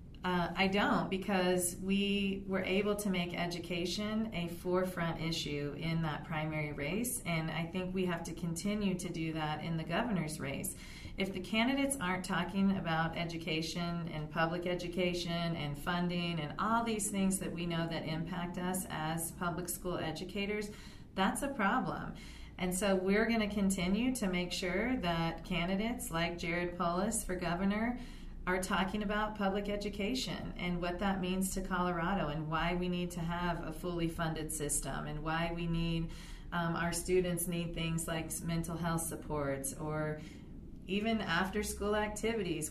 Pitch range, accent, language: 165-190 Hz, American, English